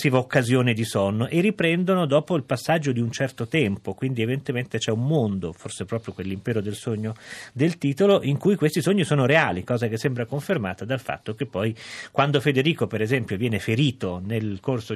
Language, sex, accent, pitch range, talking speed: Italian, male, native, 110-145 Hz, 185 wpm